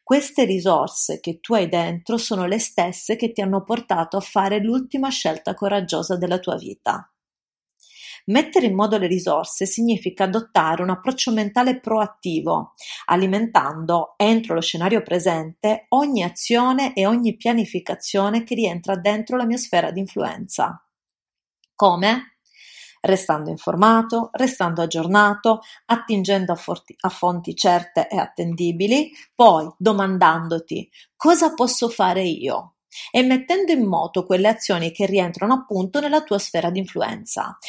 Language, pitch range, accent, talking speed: Italian, 180-235 Hz, native, 130 wpm